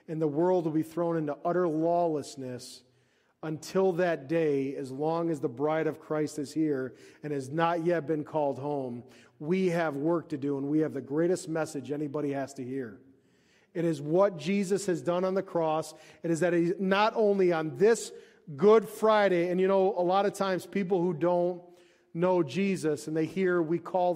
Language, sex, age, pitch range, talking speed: English, male, 40-59, 135-170 Hz, 195 wpm